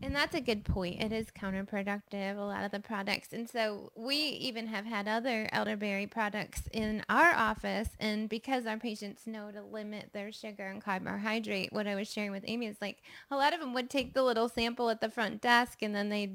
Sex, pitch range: female, 210-250 Hz